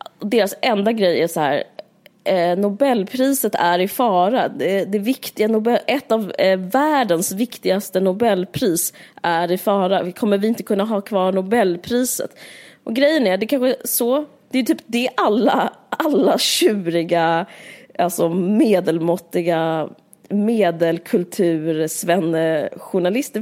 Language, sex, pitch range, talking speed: Swedish, female, 185-250 Hz, 130 wpm